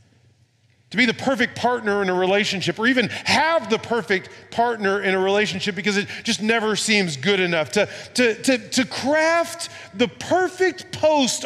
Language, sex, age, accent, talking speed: English, male, 40-59, American, 170 wpm